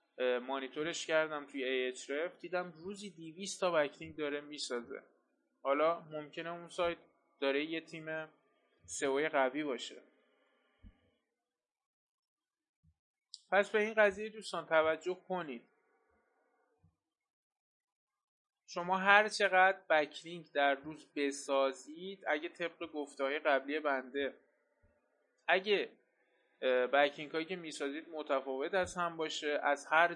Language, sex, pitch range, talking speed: Persian, male, 145-180 Hz, 100 wpm